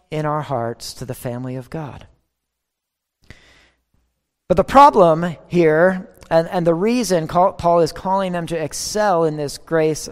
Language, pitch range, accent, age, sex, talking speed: English, 170-220 Hz, American, 40-59, male, 150 wpm